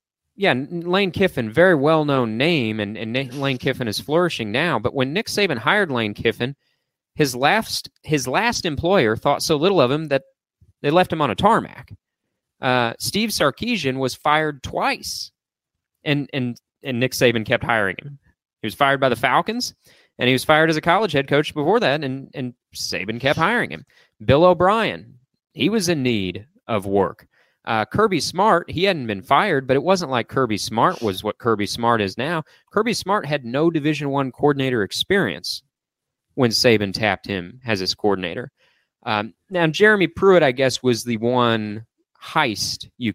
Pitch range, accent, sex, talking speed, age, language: 110-160 Hz, American, male, 175 wpm, 30-49, English